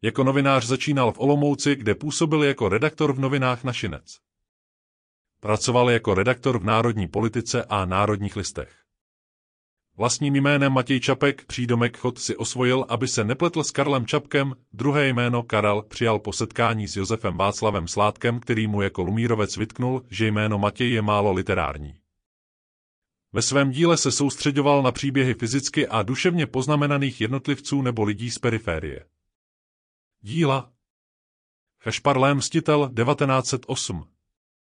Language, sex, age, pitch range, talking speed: Czech, male, 30-49, 105-135 Hz, 130 wpm